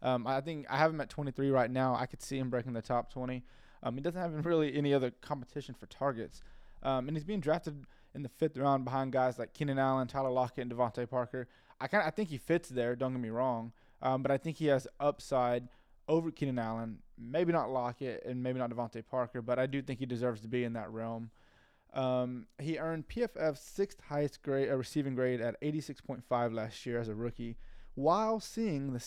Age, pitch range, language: 20-39, 125-150 Hz, English